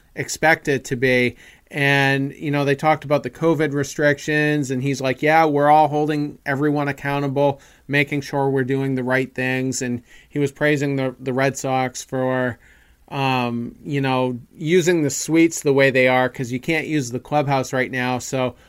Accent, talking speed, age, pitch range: American, 185 wpm, 40-59, 130-155 Hz